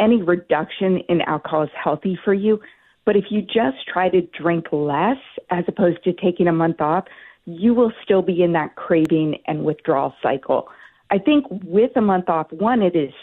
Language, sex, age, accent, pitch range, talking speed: English, female, 40-59, American, 160-200 Hz, 190 wpm